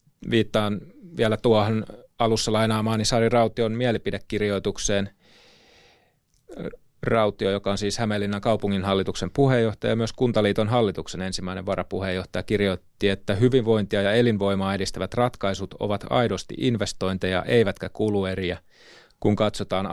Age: 30-49